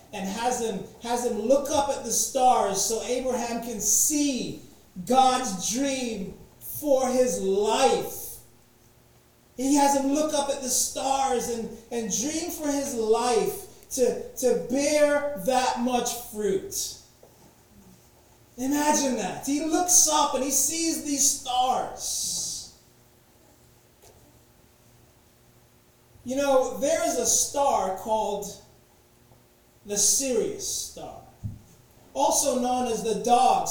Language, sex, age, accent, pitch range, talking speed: English, male, 30-49, American, 235-295 Hz, 115 wpm